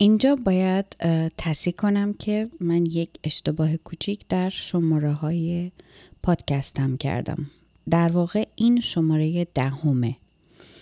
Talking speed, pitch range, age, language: 105 wpm, 155-190 Hz, 30-49, Persian